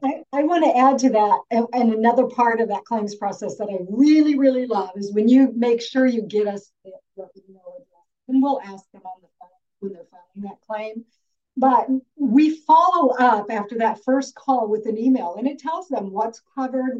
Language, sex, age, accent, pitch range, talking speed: English, female, 50-69, American, 200-260 Hz, 205 wpm